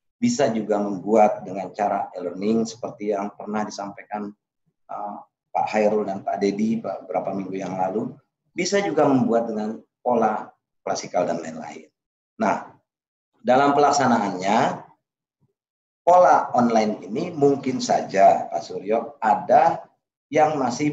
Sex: male